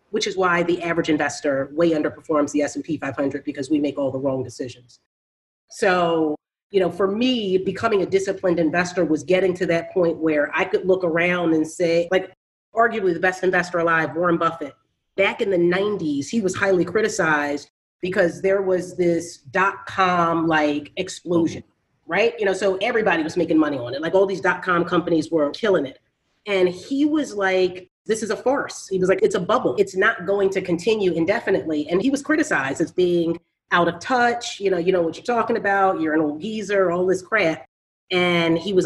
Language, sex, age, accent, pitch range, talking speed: English, female, 30-49, American, 160-195 Hz, 195 wpm